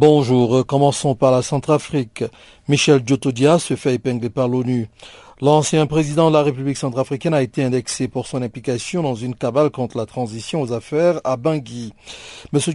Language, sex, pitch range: French, male, 125-150 Hz